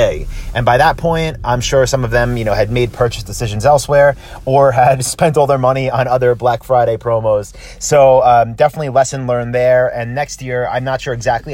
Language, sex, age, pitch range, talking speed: English, male, 30-49, 115-130 Hz, 210 wpm